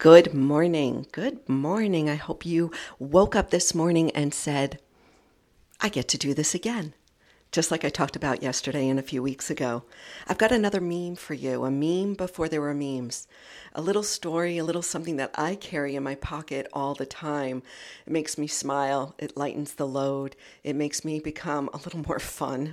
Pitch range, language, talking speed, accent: 130-155 Hz, English, 195 wpm, American